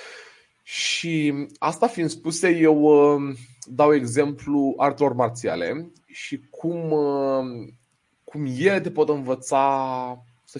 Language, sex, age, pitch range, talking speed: Romanian, male, 30-49, 120-150 Hz, 95 wpm